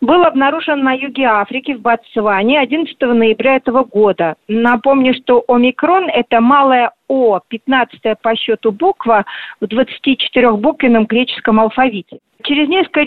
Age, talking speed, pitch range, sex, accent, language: 50-69, 130 wpm, 235-285 Hz, female, native, Russian